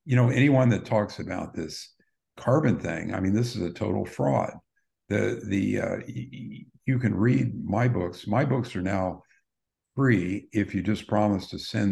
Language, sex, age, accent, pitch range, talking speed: English, male, 50-69, American, 95-110 Hz, 185 wpm